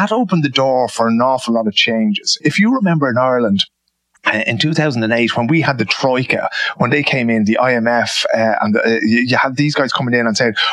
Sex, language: male, English